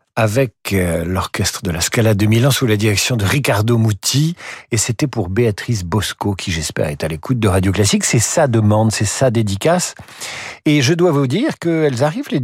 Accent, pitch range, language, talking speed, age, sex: French, 105-140 Hz, French, 195 wpm, 50-69, male